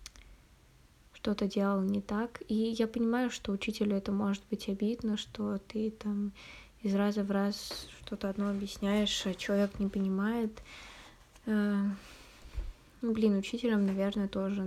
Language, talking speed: Russian, 130 wpm